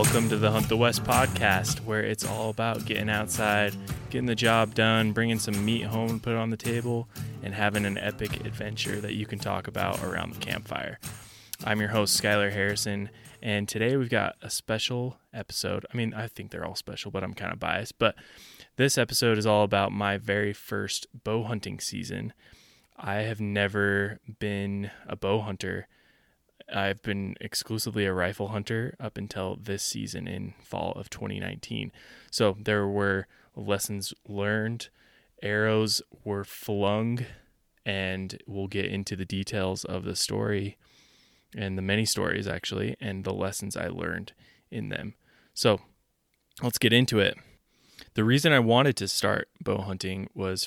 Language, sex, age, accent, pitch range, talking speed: English, male, 20-39, American, 100-115 Hz, 165 wpm